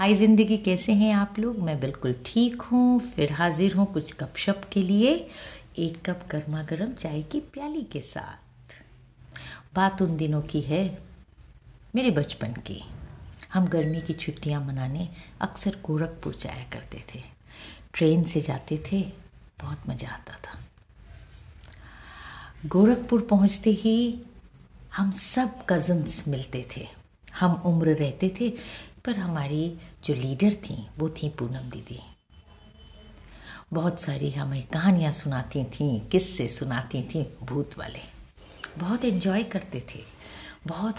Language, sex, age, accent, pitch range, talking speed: Hindi, female, 60-79, native, 135-195 Hz, 130 wpm